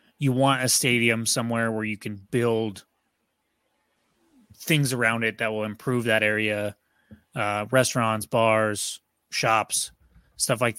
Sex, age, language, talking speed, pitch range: male, 30-49, English, 130 wpm, 110-130 Hz